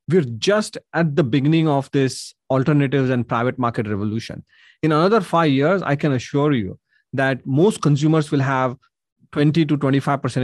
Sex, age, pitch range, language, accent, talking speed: male, 30-49, 125-155 Hz, English, Indian, 150 wpm